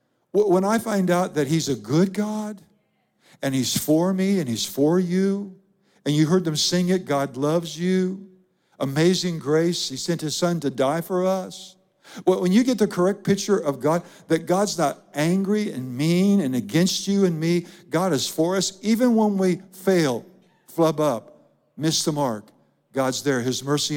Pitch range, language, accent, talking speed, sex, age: 140-185 Hz, English, American, 185 wpm, male, 60-79